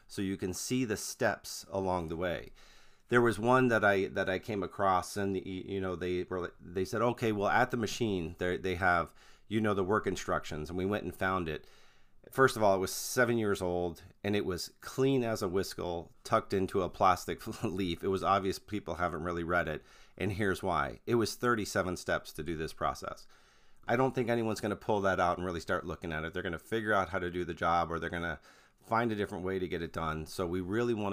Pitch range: 90-115 Hz